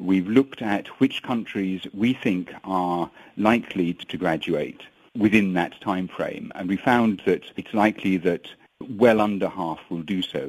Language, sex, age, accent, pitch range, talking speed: English, male, 50-69, British, 85-105 Hz, 160 wpm